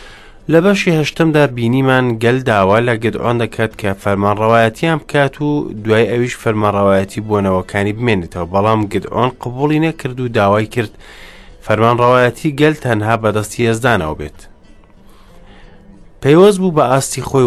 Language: English